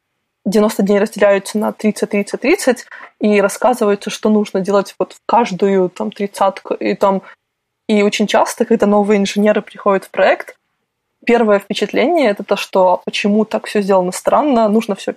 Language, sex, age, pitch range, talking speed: Russian, female, 20-39, 195-215 Hz, 150 wpm